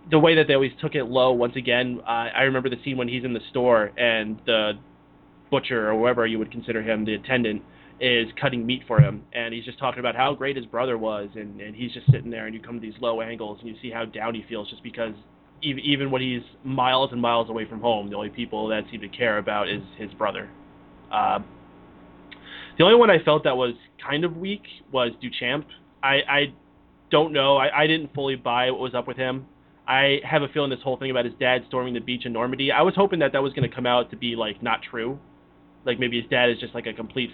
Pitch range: 115-135 Hz